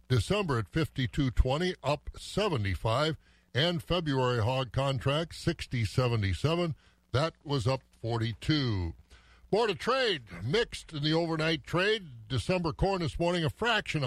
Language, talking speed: English, 120 wpm